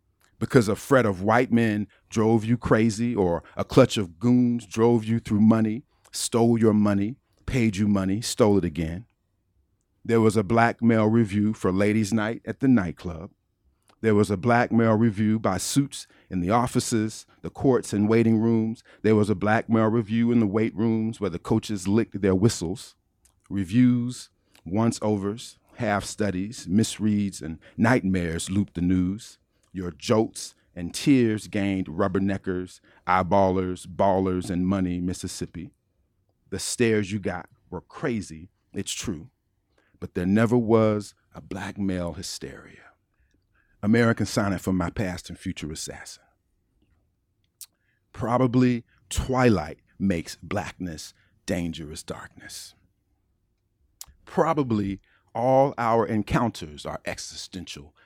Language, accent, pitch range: English, American, 95-115 Hz